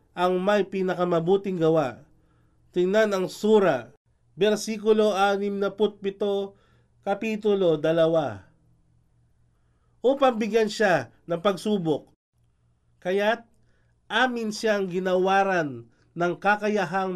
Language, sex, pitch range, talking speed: English, male, 165-210 Hz, 75 wpm